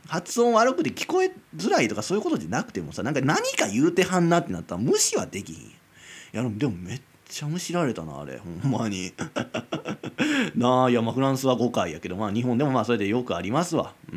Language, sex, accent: Japanese, male, native